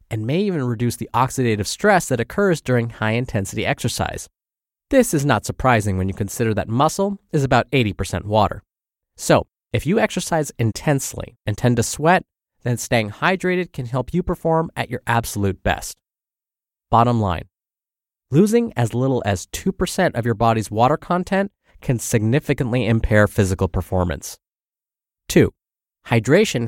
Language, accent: English, American